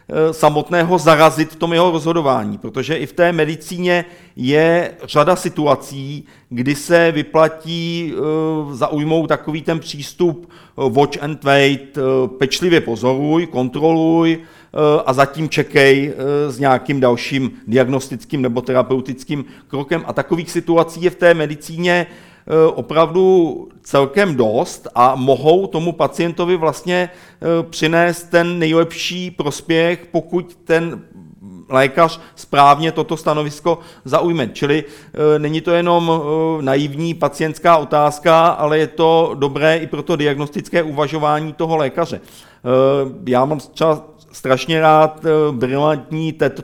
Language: Czech